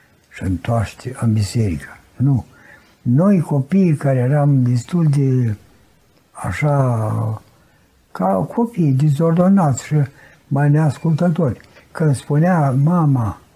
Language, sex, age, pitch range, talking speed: Romanian, male, 60-79, 115-160 Hz, 90 wpm